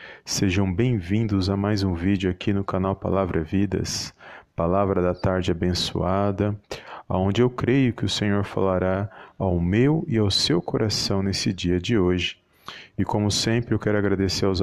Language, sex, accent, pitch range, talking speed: Portuguese, male, Brazilian, 95-110 Hz, 160 wpm